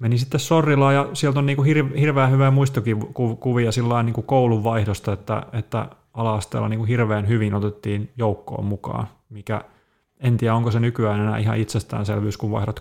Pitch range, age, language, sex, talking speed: 105-120 Hz, 30-49, Finnish, male, 170 wpm